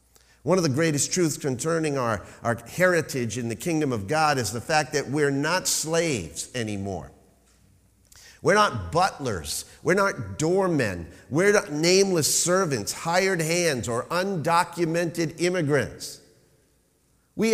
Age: 50-69